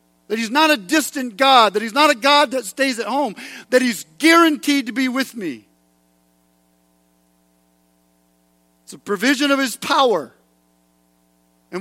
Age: 50-69